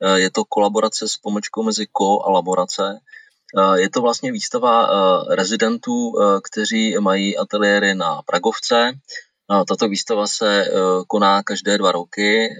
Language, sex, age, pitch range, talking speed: Czech, male, 30-49, 95-110 Hz, 125 wpm